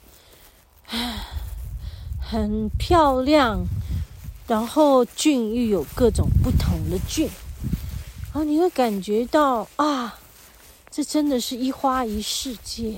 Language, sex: Chinese, female